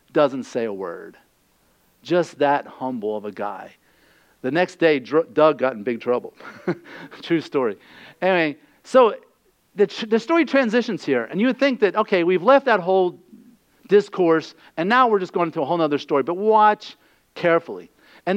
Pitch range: 170-225 Hz